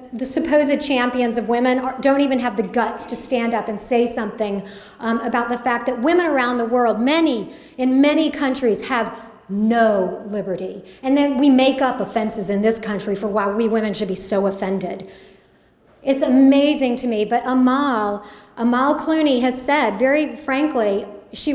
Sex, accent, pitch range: female, American, 225-280 Hz